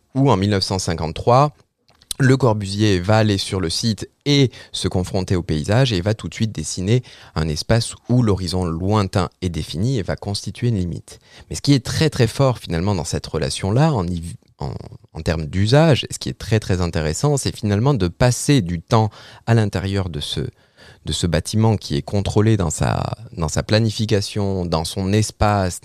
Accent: French